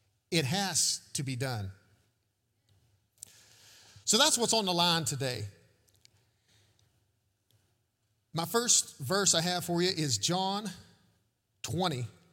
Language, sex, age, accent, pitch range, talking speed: English, male, 40-59, American, 110-180 Hz, 105 wpm